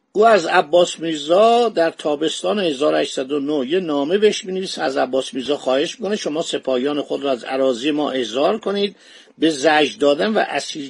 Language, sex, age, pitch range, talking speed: Persian, male, 50-69, 145-200 Hz, 170 wpm